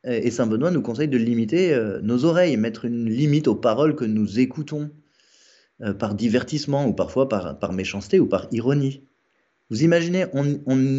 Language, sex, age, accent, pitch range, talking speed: French, male, 30-49, French, 115-160 Hz, 160 wpm